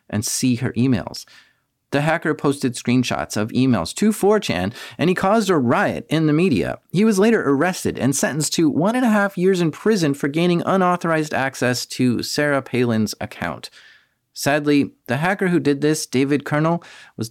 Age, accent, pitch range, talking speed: 40-59, American, 130-195 Hz, 175 wpm